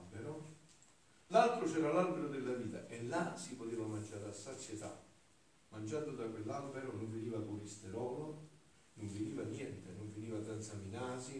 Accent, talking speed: native, 120 wpm